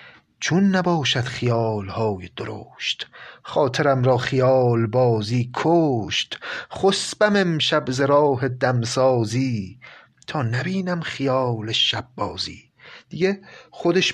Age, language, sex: 30-49, Persian, male